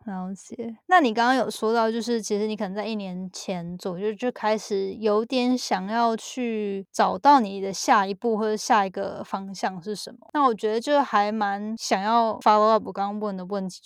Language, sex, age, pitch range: Chinese, female, 10-29, 200-240 Hz